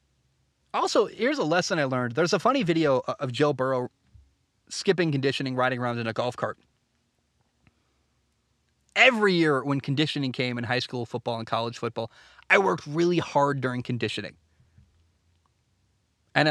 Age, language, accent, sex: 20-39, English, American, male